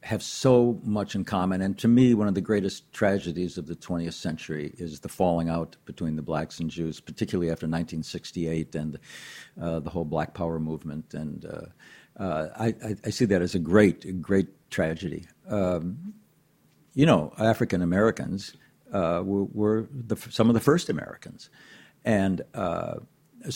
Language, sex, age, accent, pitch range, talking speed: English, male, 60-79, American, 90-120 Hz, 155 wpm